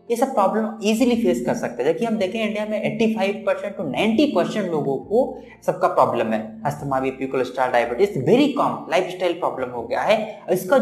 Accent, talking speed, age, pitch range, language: native, 175 wpm, 20-39, 175-225 Hz, Hindi